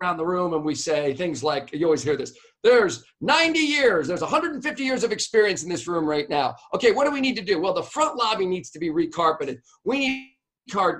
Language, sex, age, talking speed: English, male, 40-59, 240 wpm